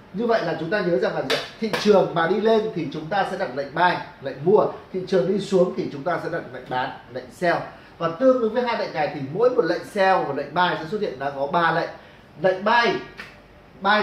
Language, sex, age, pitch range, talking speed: Vietnamese, male, 20-39, 170-210 Hz, 255 wpm